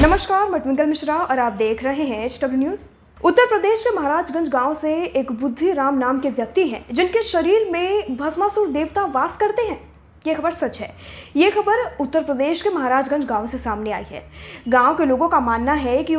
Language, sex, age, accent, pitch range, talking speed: Hindi, female, 20-39, native, 260-360 Hz, 195 wpm